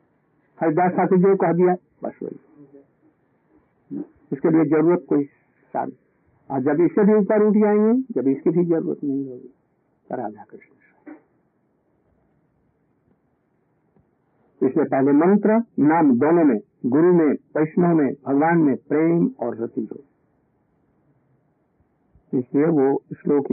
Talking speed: 100 wpm